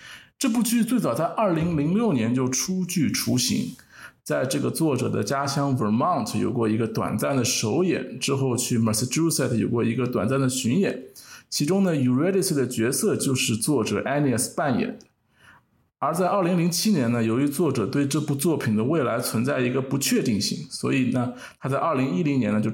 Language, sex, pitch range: Chinese, male, 120-165 Hz